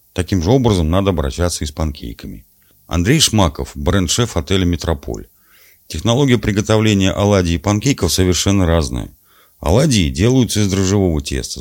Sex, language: male, Russian